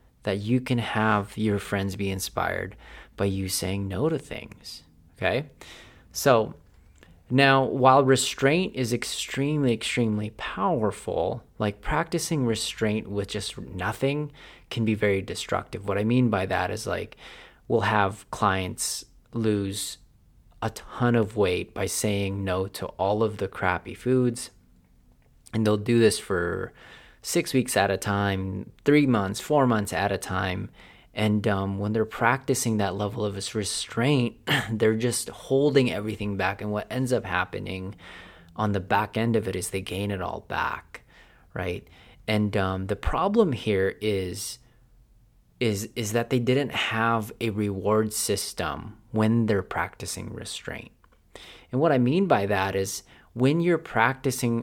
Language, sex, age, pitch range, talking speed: English, male, 30-49, 100-120 Hz, 150 wpm